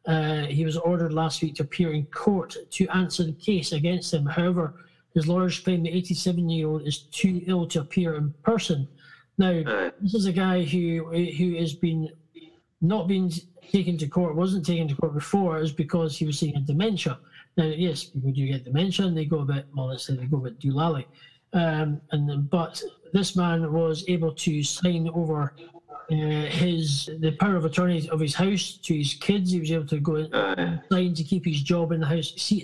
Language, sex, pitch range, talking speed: English, male, 155-180 Hz, 200 wpm